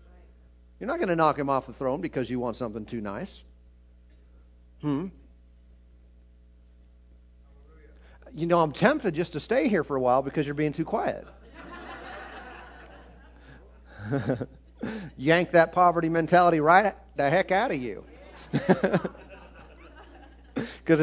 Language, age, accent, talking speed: English, 50-69, American, 125 wpm